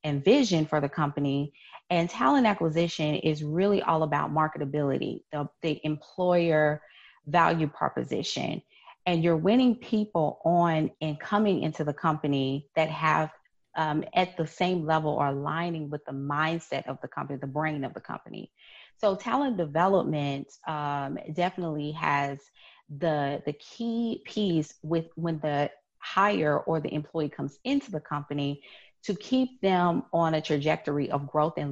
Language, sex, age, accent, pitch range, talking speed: English, female, 30-49, American, 145-175 Hz, 150 wpm